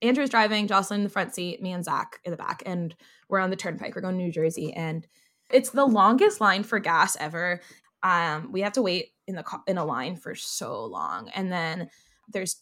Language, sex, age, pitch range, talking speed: English, female, 20-39, 175-220 Hz, 230 wpm